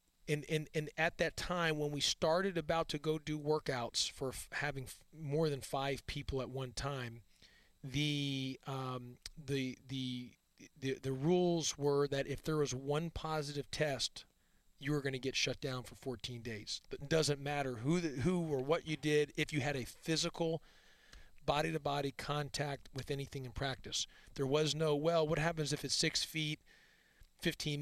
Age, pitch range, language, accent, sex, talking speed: 40-59, 135-160 Hz, English, American, male, 175 wpm